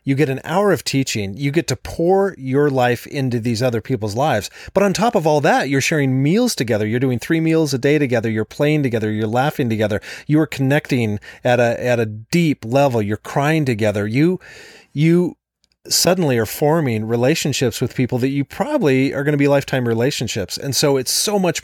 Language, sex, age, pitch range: English, male, 40-59, 110-145 Hz